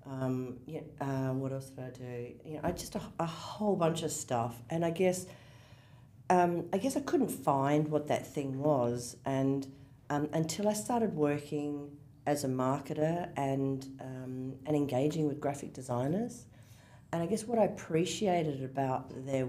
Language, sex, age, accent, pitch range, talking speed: English, female, 40-59, Australian, 130-165 Hz, 170 wpm